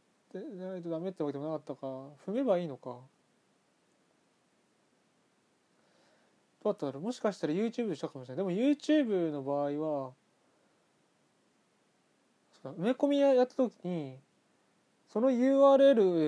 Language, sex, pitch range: Japanese, male, 150-225 Hz